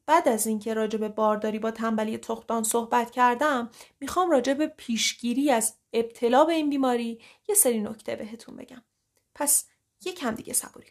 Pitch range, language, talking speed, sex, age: 220-290 Hz, Persian, 155 wpm, female, 30-49